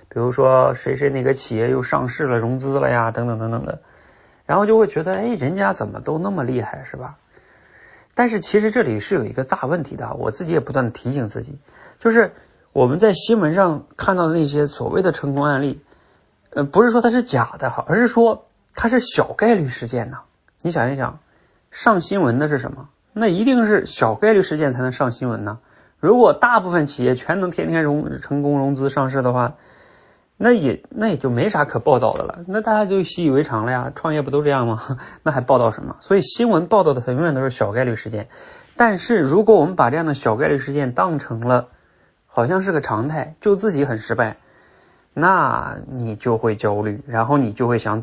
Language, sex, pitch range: Chinese, male, 120-180 Hz